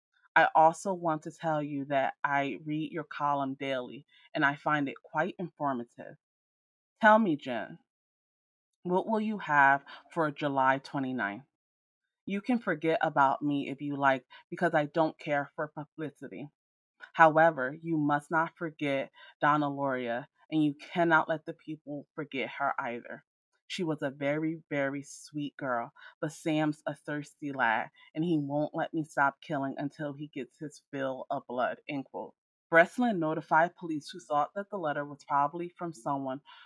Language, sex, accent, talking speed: English, female, American, 155 wpm